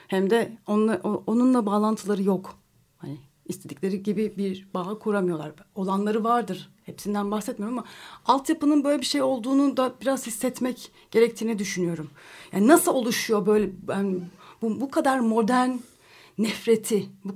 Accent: native